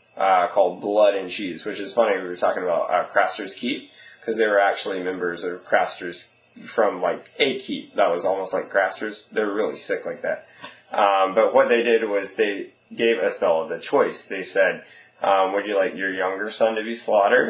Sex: male